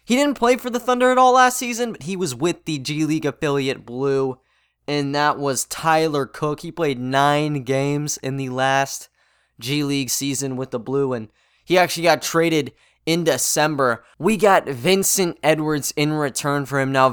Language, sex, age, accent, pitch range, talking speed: English, male, 20-39, American, 135-180 Hz, 185 wpm